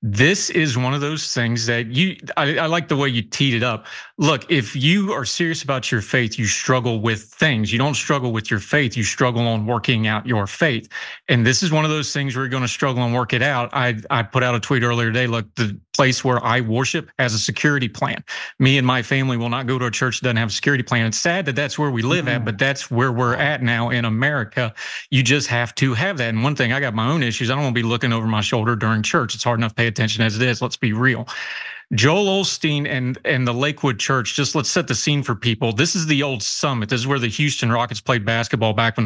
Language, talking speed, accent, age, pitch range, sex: English, 265 wpm, American, 30-49, 115-140 Hz, male